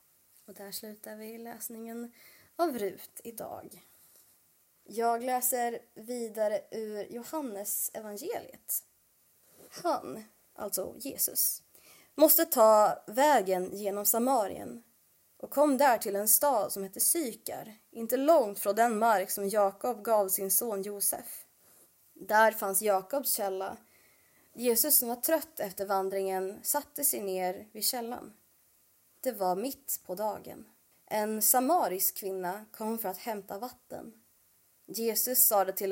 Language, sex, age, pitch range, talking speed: Swedish, female, 20-39, 200-255 Hz, 120 wpm